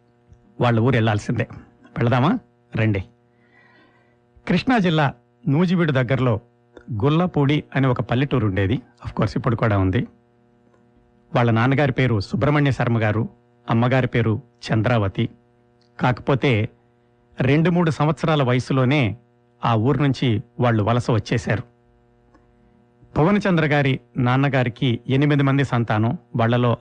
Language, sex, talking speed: Telugu, male, 100 wpm